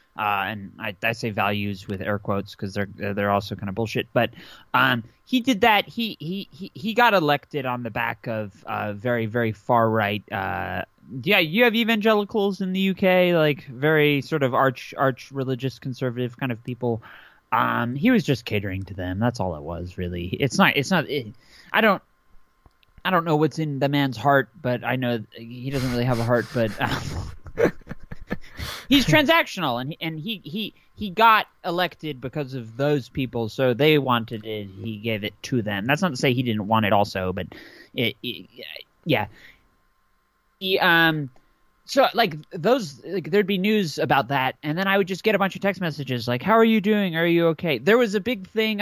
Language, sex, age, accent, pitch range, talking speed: English, male, 20-39, American, 115-185 Hz, 205 wpm